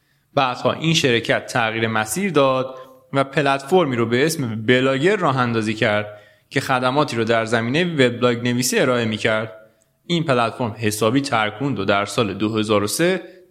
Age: 20-39